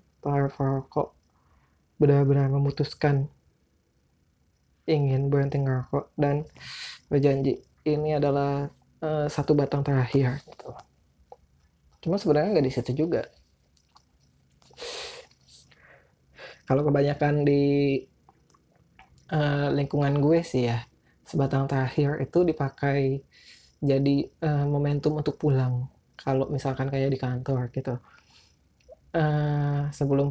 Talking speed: 90 wpm